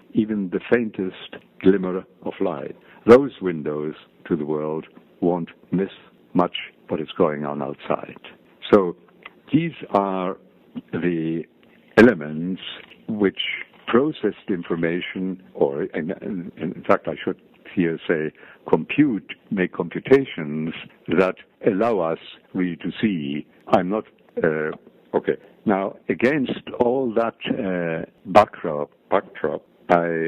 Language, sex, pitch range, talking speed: English, male, 80-95 Hz, 115 wpm